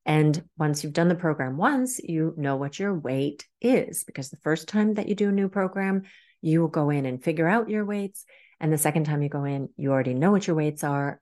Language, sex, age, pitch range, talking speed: English, female, 40-59, 150-190 Hz, 245 wpm